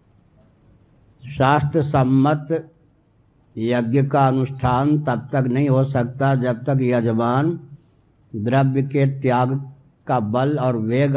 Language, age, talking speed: Hindi, 60-79, 105 wpm